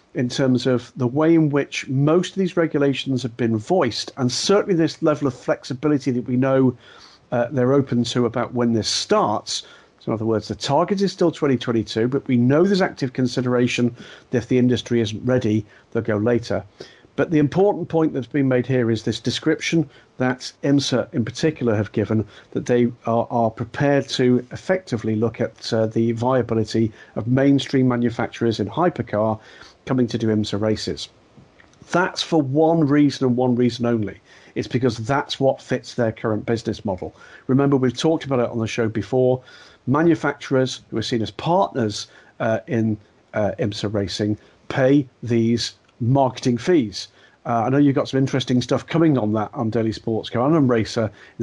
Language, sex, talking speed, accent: English, male, 180 wpm, British